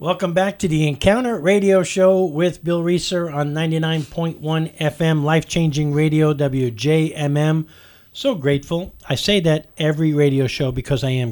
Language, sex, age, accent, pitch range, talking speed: English, male, 50-69, American, 130-155 Hz, 145 wpm